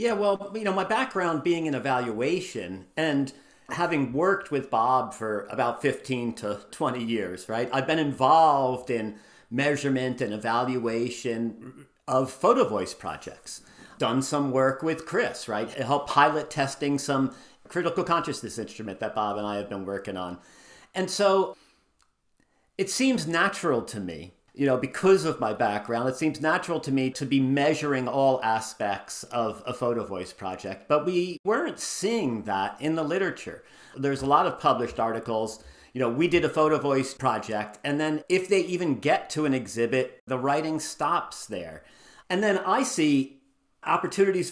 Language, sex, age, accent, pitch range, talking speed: English, male, 50-69, American, 120-170 Hz, 165 wpm